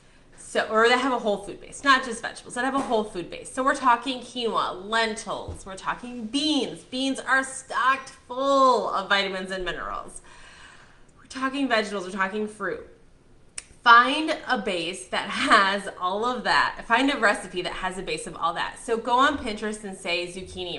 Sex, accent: female, American